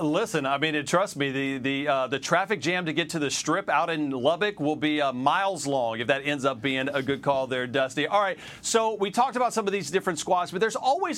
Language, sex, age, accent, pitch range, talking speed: English, male, 40-59, American, 145-195 Hz, 265 wpm